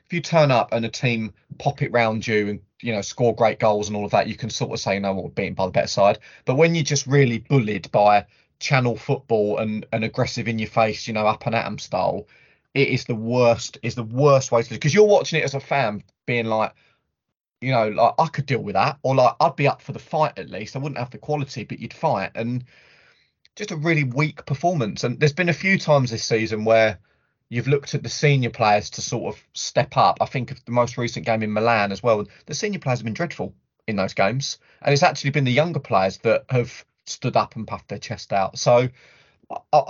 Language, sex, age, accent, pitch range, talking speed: English, male, 20-39, British, 110-140 Hz, 245 wpm